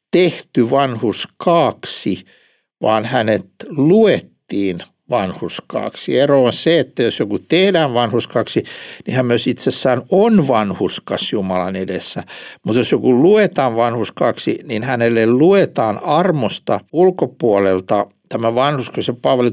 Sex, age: male, 60-79